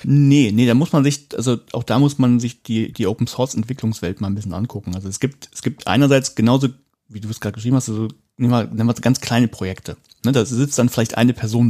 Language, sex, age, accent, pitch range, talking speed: German, male, 40-59, German, 110-130 Hz, 240 wpm